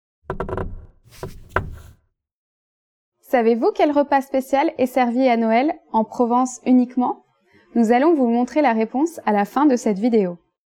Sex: female